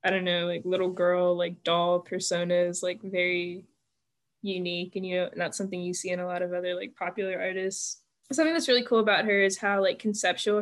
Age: 10-29